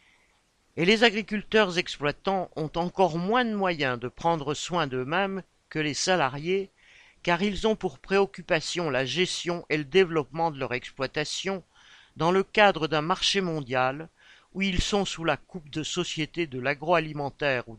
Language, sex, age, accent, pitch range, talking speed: French, male, 50-69, French, 150-190 Hz, 155 wpm